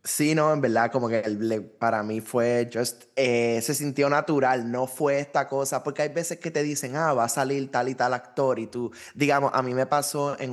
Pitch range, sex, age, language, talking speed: 115-140 Hz, male, 20-39, Spanish, 230 wpm